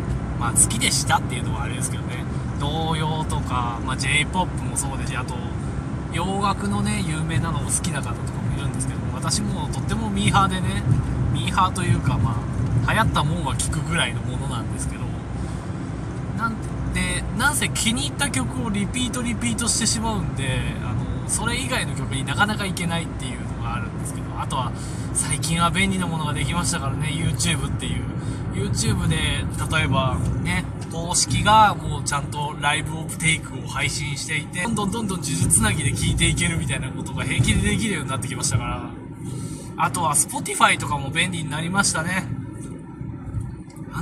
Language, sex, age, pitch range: Japanese, male, 20-39, 125-155 Hz